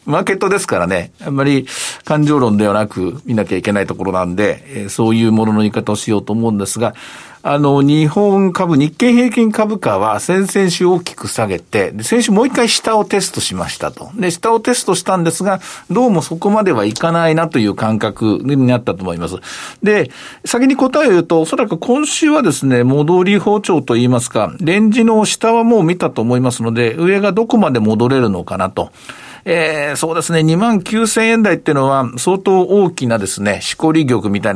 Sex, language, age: male, Japanese, 50-69